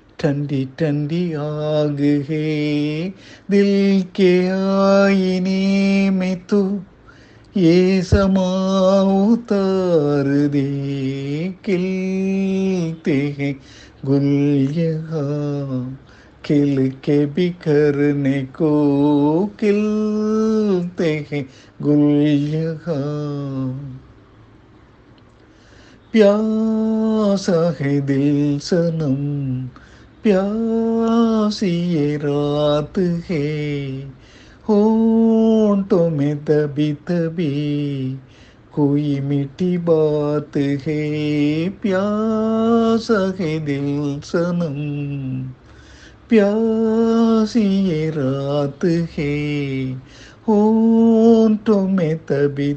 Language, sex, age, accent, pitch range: Tamil, male, 50-69, native, 140-195 Hz